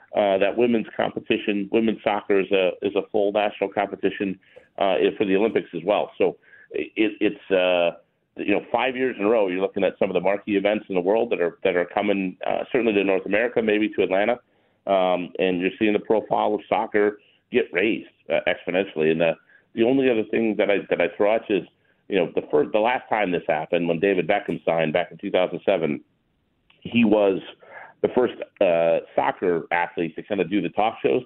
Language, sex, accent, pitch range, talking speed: English, male, American, 95-115 Hz, 215 wpm